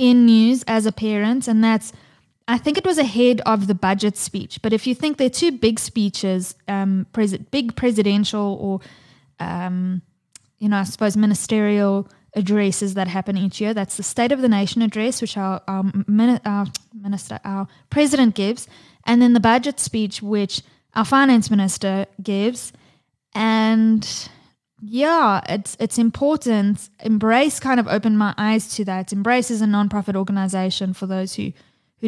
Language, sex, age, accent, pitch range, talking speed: English, female, 10-29, Australian, 195-230 Hz, 165 wpm